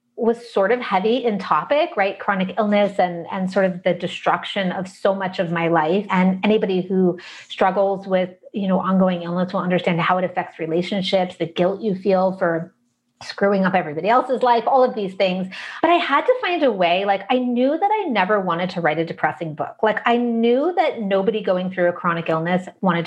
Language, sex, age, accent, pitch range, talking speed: English, female, 30-49, American, 175-235 Hz, 210 wpm